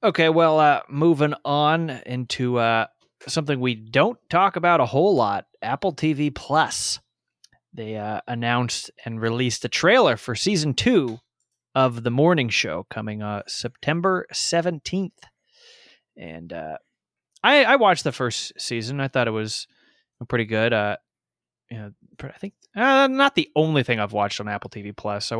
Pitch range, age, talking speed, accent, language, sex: 110-145 Hz, 20-39, 160 wpm, American, English, male